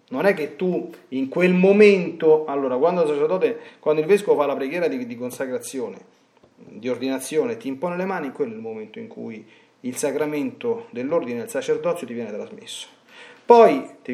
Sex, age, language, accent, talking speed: male, 40-59, Italian, native, 165 wpm